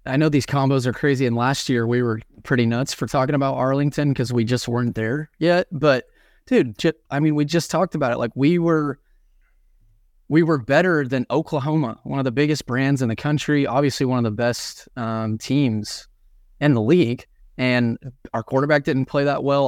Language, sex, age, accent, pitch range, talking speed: English, male, 20-39, American, 120-140 Hz, 200 wpm